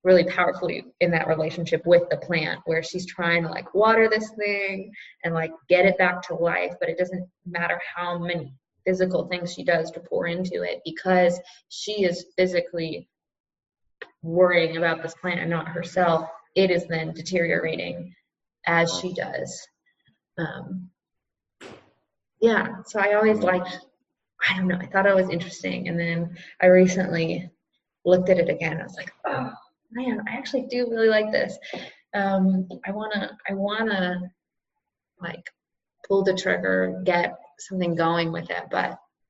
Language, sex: English, female